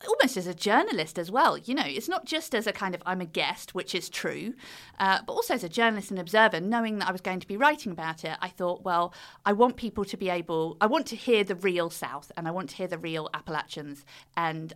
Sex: female